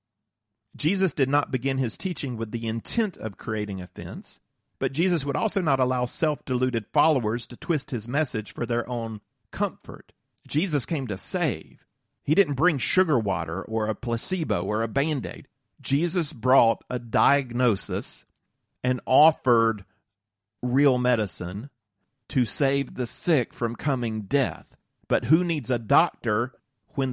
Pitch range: 110-140 Hz